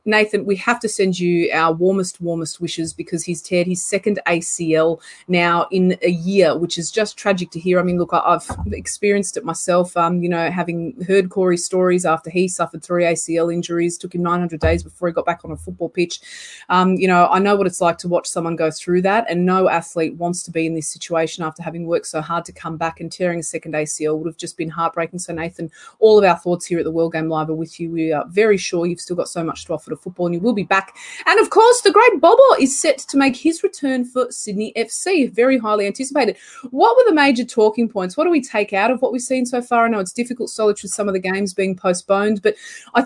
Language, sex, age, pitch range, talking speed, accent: English, female, 30-49, 170-235 Hz, 250 wpm, Australian